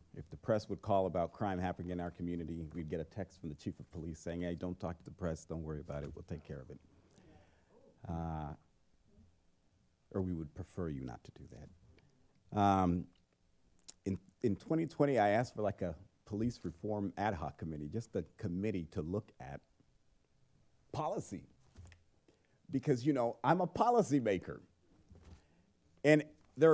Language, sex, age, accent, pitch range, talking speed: English, male, 40-59, American, 90-135 Hz, 170 wpm